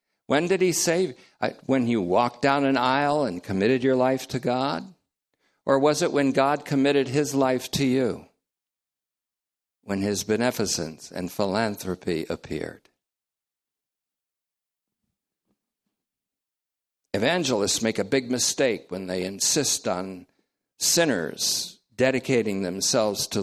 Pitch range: 95-140 Hz